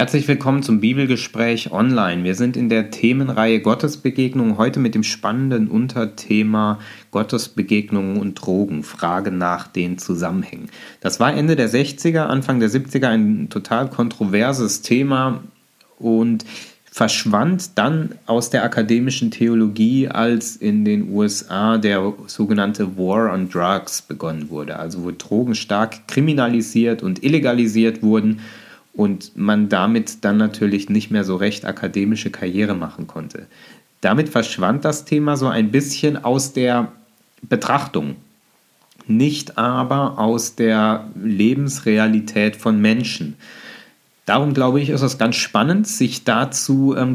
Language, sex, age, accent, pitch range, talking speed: German, male, 30-49, German, 110-140 Hz, 130 wpm